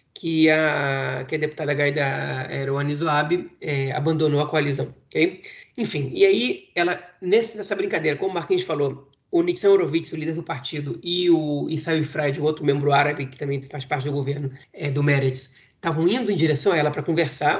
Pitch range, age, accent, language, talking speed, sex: 145-175 Hz, 30-49, Brazilian, Portuguese, 190 wpm, male